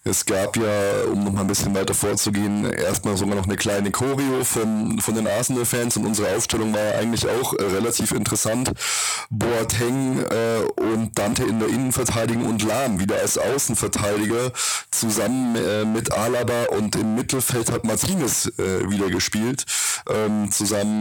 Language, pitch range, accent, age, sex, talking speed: German, 105-125 Hz, German, 20-39, male, 150 wpm